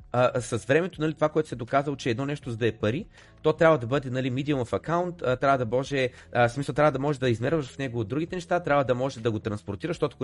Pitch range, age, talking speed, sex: 120-160 Hz, 30-49, 250 wpm, male